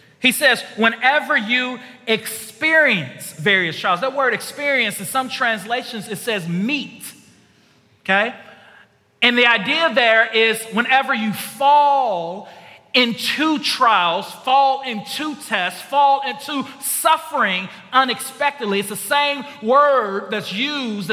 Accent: American